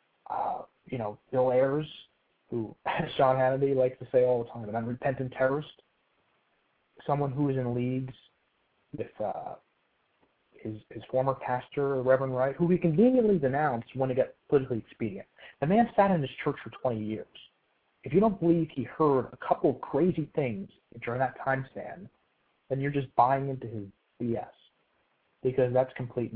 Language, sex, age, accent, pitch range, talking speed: English, male, 30-49, American, 120-145 Hz, 170 wpm